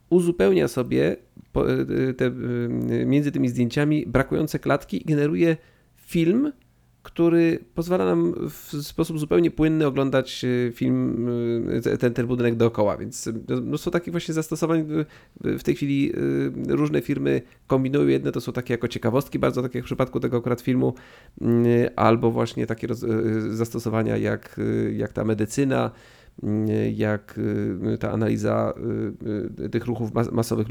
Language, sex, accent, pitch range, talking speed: Polish, male, native, 110-130 Hz, 125 wpm